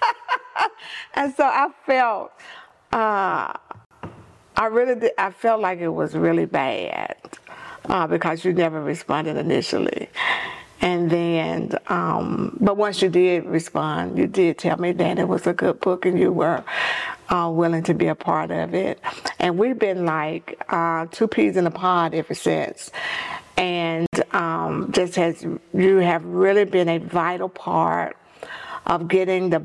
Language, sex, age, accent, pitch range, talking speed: English, female, 50-69, American, 170-200 Hz, 155 wpm